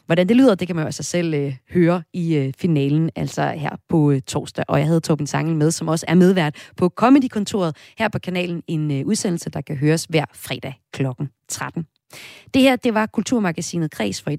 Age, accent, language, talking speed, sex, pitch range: 30-49, native, Danish, 215 wpm, female, 145-205 Hz